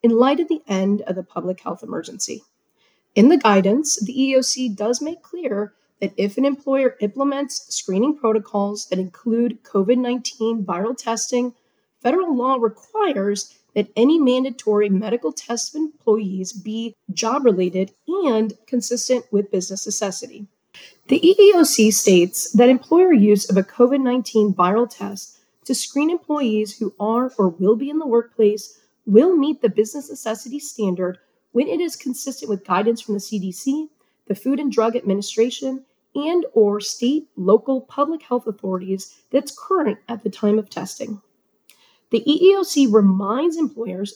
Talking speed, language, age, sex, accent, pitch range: 145 wpm, English, 30-49, female, American, 205-275 Hz